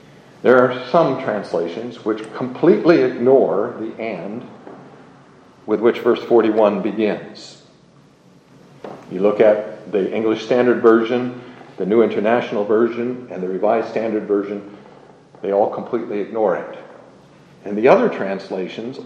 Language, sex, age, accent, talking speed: English, male, 50-69, American, 125 wpm